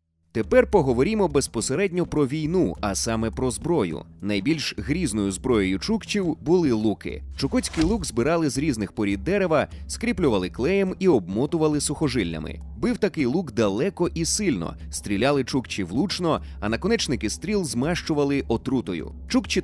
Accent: native